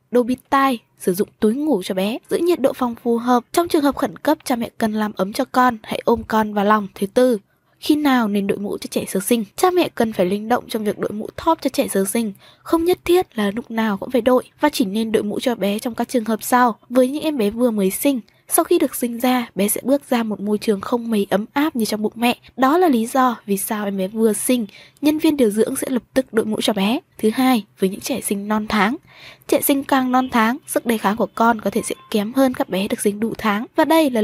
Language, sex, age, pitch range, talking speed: Vietnamese, female, 20-39, 210-270 Hz, 280 wpm